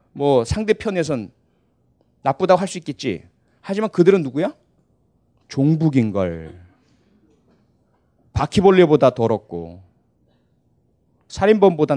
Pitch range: 120-175 Hz